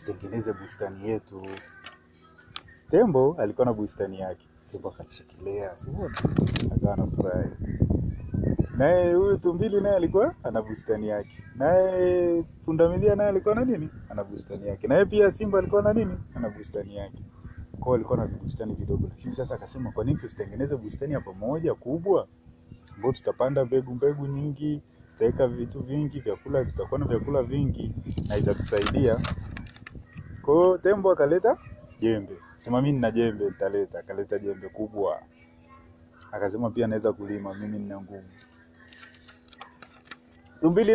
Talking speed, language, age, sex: 100 wpm, Swahili, 30-49, male